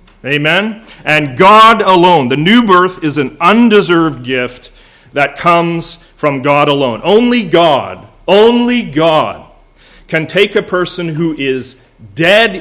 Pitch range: 135-180 Hz